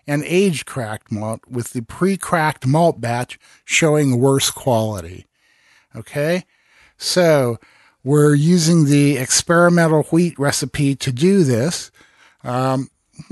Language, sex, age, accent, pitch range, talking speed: English, male, 50-69, American, 125-165 Hz, 110 wpm